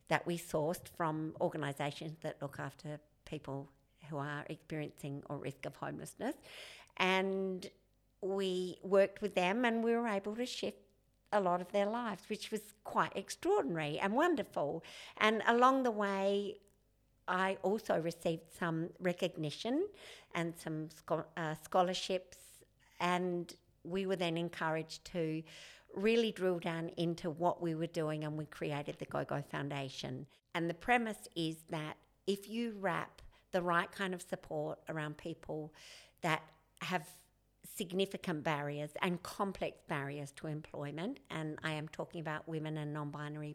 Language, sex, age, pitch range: English, female, 50-69, 155-190 Hz